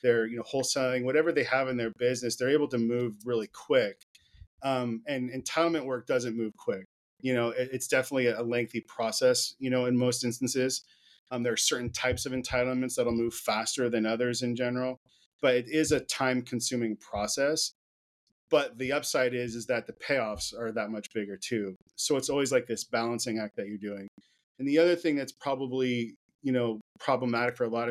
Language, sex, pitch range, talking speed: English, male, 115-130 Hz, 200 wpm